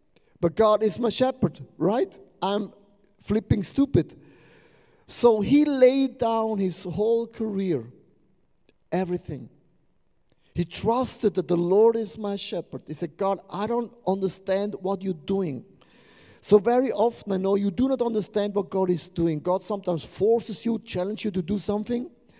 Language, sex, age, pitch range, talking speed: English, male, 50-69, 175-235 Hz, 150 wpm